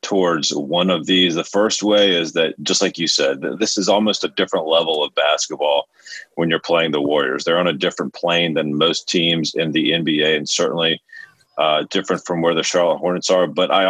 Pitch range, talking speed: 90-105 Hz, 210 wpm